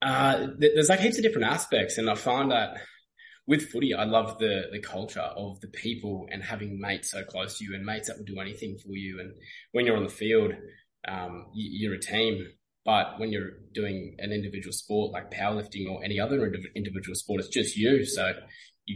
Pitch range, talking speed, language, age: 95-110 Hz, 205 wpm, English, 20-39